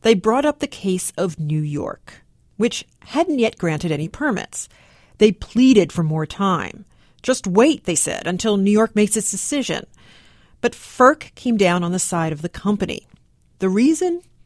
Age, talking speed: 40-59, 170 wpm